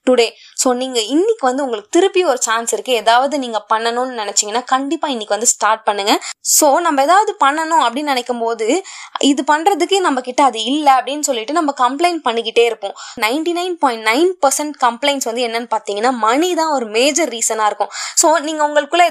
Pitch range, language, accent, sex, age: 225-300 Hz, Tamil, native, female, 20-39